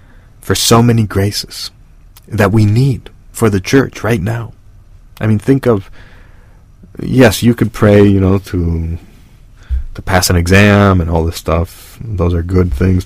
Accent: American